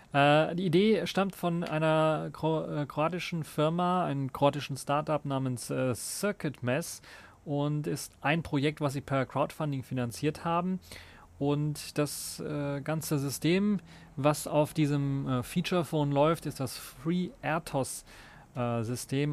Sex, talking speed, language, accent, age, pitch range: male, 130 wpm, German, German, 30-49, 125-150 Hz